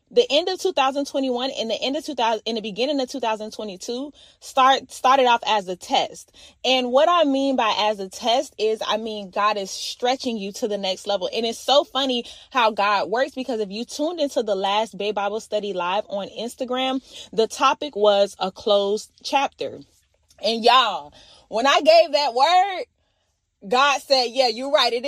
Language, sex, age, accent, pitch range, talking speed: English, female, 20-39, American, 215-280 Hz, 185 wpm